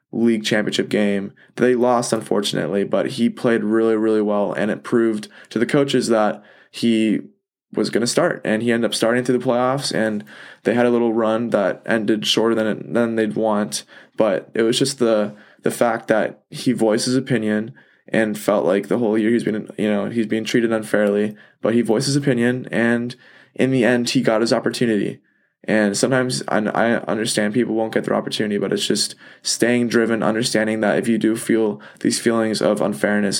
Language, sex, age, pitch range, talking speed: English, male, 20-39, 105-115 Hz, 195 wpm